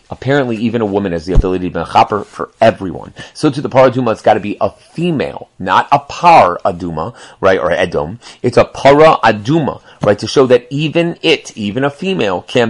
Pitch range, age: 95-130 Hz, 30-49